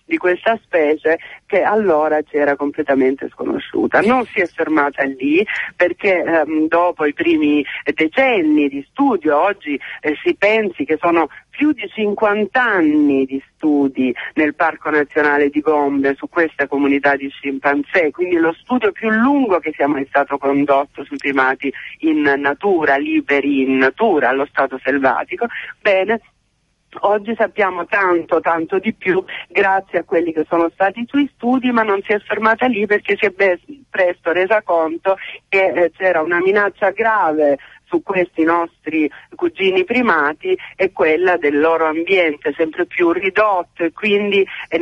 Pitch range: 145-205 Hz